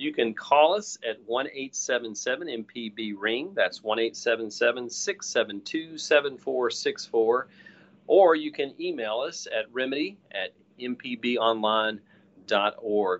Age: 40-59